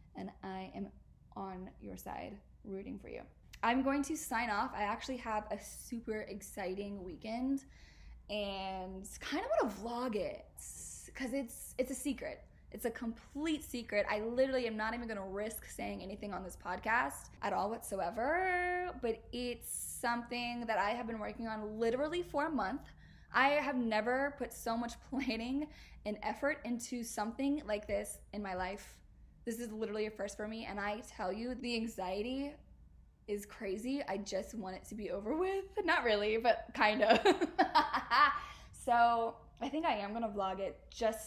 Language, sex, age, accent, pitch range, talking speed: English, female, 10-29, American, 200-255 Hz, 170 wpm